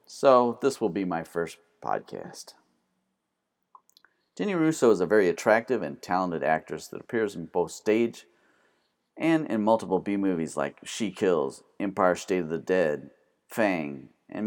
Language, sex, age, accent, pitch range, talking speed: English, male, 40-59, American, 90-120 Hz, 145 wpm